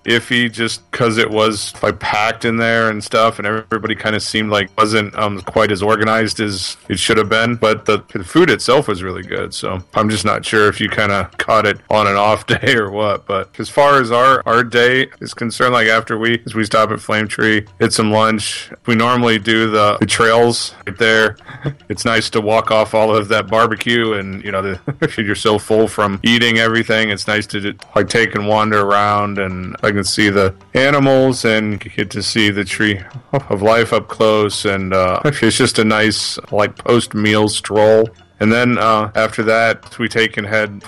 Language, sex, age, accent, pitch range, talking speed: English, male, 20-39, American, 105-115 Hz, 215 wpm